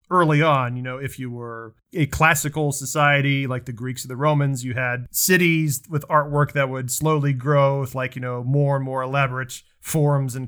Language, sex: English, male